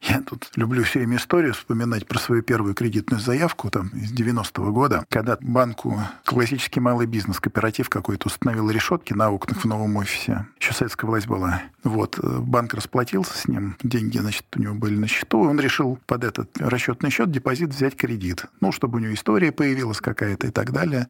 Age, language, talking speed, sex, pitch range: 50-69, Russian, 190 wpm, male, 105-130 Hz